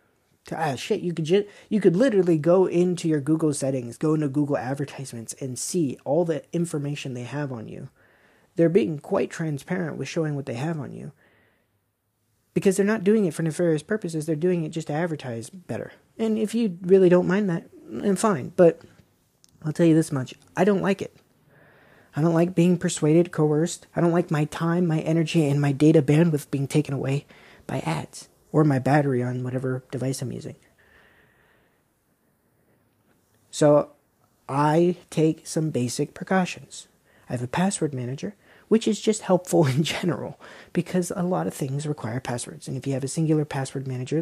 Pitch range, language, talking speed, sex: 135-175 Hz, English, 180 wpm, male